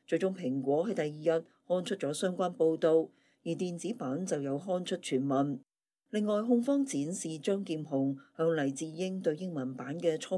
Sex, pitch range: female, 150-190 Hz